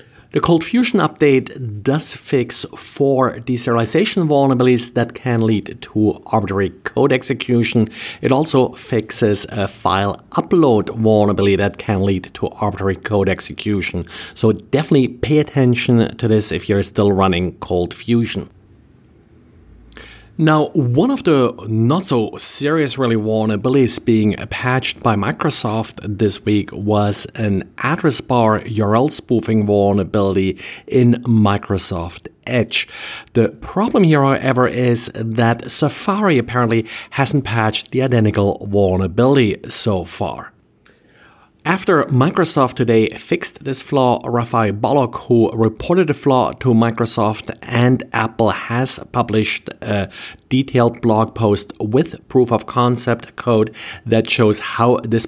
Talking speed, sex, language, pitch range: 120 wpm, male, English, 105-130 Hz